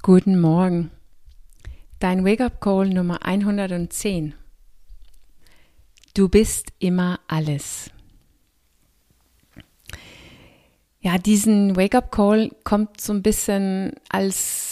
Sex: female